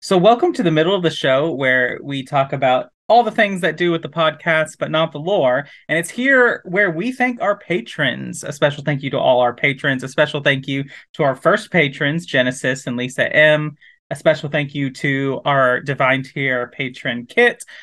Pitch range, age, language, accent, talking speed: 135-175 Hz, 30-49, English, American, 210 wpm